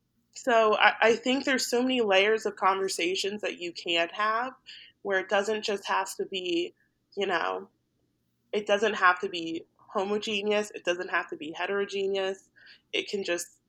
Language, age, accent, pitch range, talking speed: English, 20-39, American, 180-235 Hz, 165 wpm